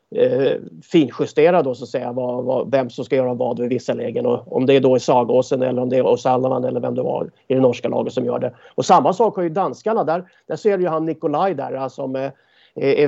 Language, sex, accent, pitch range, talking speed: English, male, Swedish, 135-210 Hz, 235 wpm